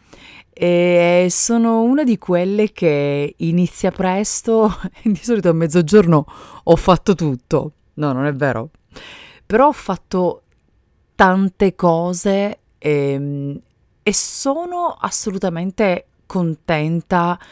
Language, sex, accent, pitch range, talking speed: Italian, female, native, 140-190 Hz, 105 wpm